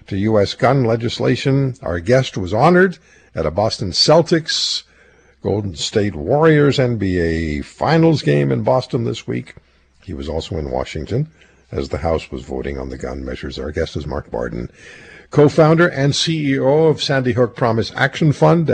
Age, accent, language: 60-79, American, English